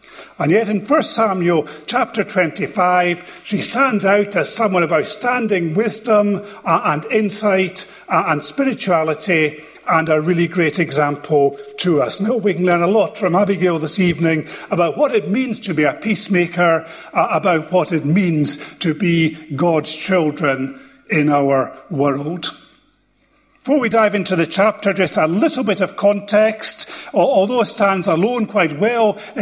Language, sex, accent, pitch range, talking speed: English, male, British, 165-215 Hz, 150 wpm